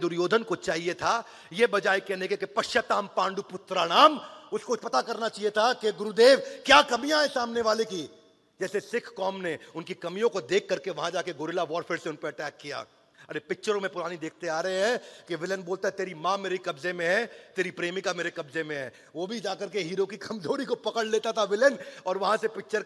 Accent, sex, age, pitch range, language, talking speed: native, male, 40-59, 180-240 Hz, Hindi, 80 wpm